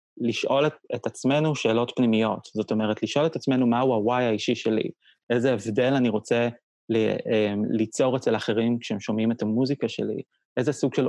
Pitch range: 115-130 Hz